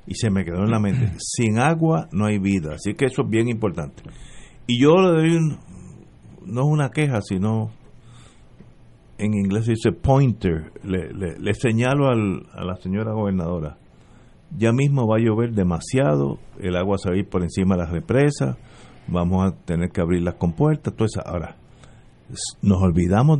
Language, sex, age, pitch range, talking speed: Spanish, male, 50-69, 95-140 Hz, 180 wpm